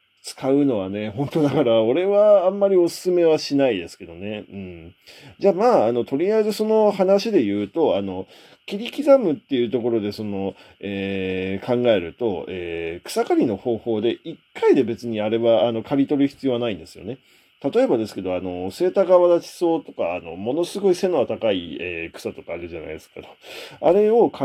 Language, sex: Japanese, male